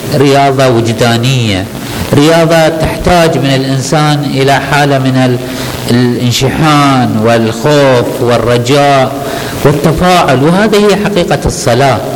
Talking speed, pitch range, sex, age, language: 85 wpm, 115-155 Hz, male, 50-69, Arabic